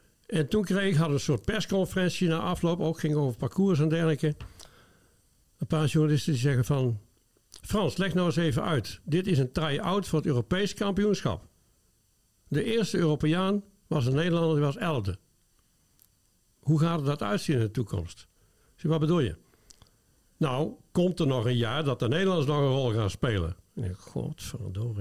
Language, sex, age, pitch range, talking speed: Dutch, male, 60-79, 125-185 Hz, 175 wpm